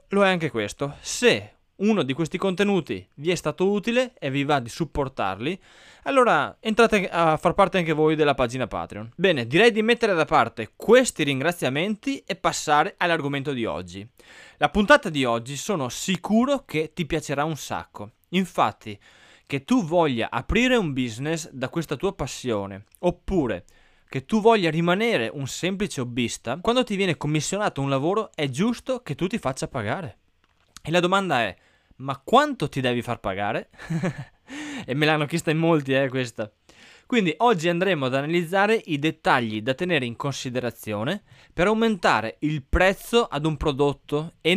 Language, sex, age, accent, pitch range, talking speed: Italian, male, 20-39, native, 130-190 Hz, 165 wpm